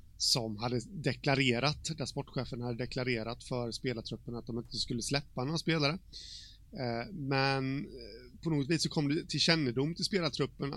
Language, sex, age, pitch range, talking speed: Swedish, male, 30-49, 120-150 Hz, 150 wpm